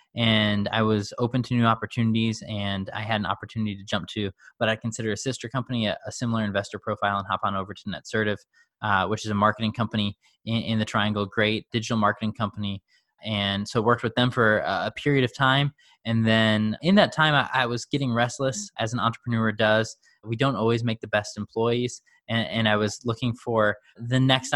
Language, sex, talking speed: English, male, 210 wpm